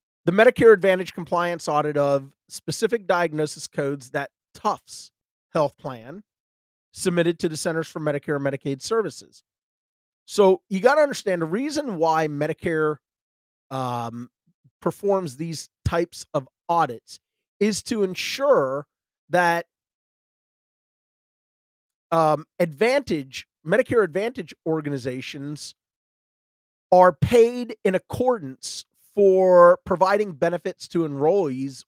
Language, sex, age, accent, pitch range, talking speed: English, male, 40-59, American, 145-190 Hz, 105 wpm